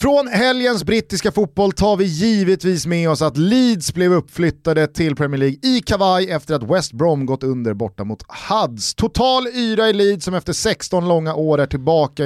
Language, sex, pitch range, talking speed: Swedish, male, 130-190 Hz, 185 wpm